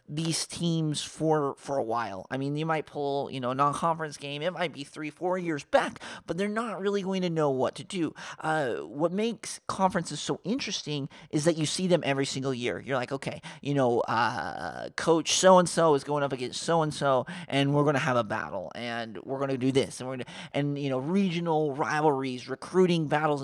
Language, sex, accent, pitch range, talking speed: English, male, American, 135-180 Hz, 225 wpm